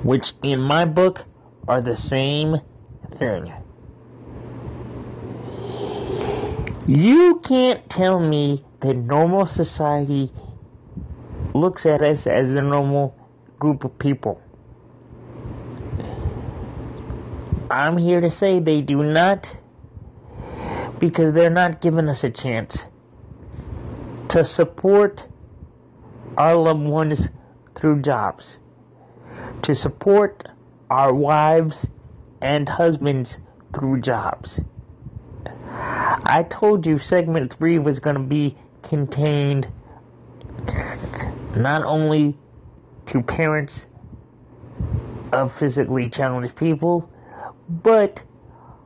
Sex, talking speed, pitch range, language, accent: male, 90 wpm, 125-165 Hz, English, American